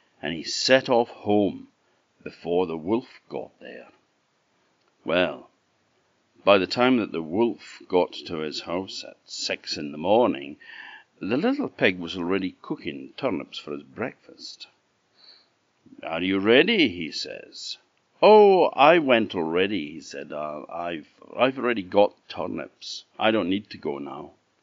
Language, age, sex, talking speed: English, 60-79, male, 145 wpm